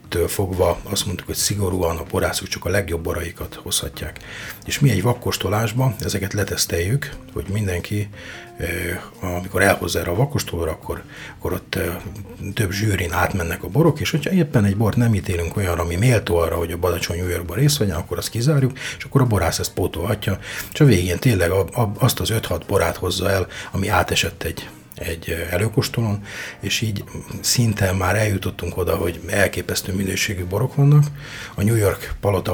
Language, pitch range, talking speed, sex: Hungarian, 90-110 Hz, 160 wpm, male